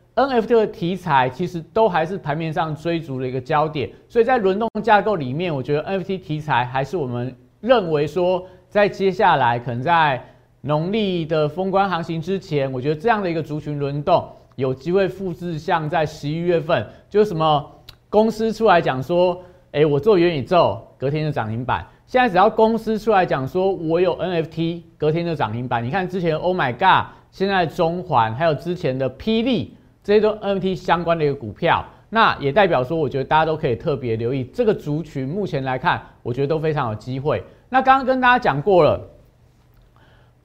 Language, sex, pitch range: Chinese, male, 145-195 Hz